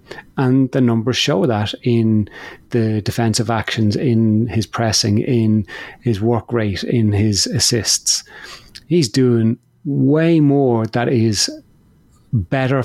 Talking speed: 120 wpm